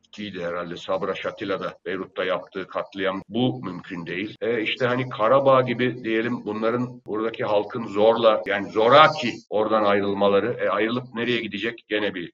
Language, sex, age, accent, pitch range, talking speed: Turkish, male, 50-69, native, 100-130 Hz, 145 wpm